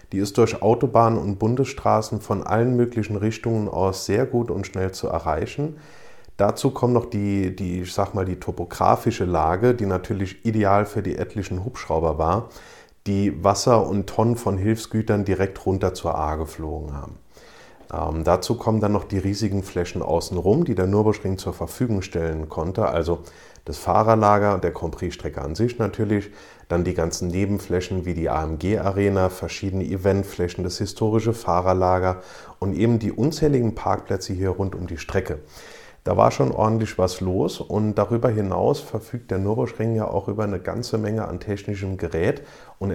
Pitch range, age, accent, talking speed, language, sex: 90-110 Hz, 30-49, German, 165 wpm, German, male